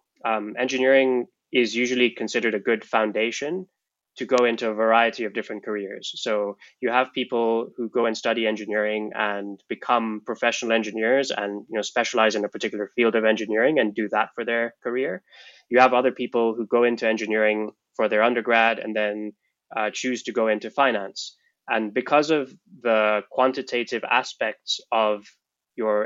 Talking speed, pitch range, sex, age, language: 165 wpm, 110-125 Hz, male, 20-39, English